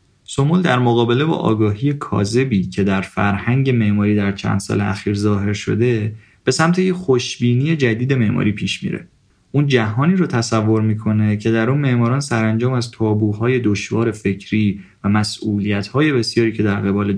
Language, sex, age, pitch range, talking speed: Persian, male, 20-39, 100-125 Hz, 155 wpm